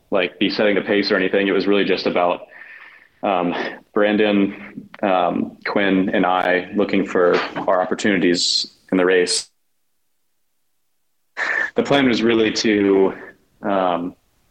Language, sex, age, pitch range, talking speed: English, male, 20-39, 95-110 Hz, 130 wpm